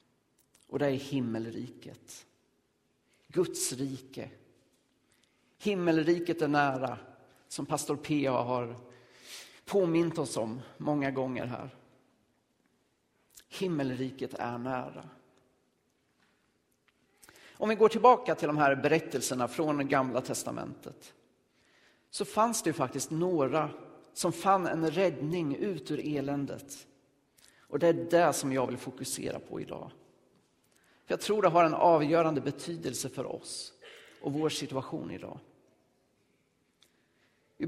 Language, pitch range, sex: Swedish, 135-170 Hz, male